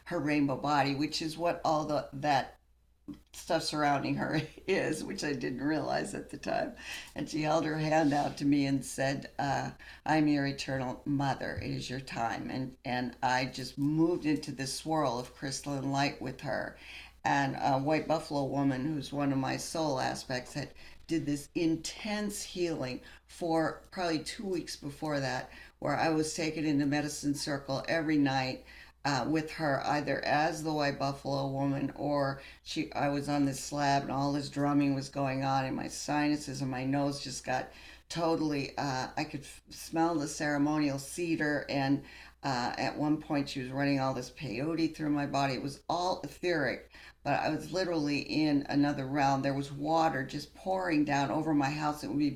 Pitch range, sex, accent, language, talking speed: 135-155 Hz, female, American, English, 180 wpm